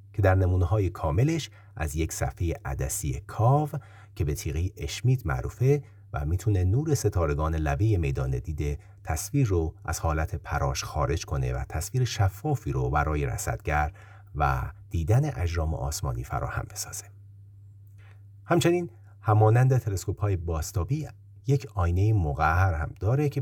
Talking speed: 135 wpm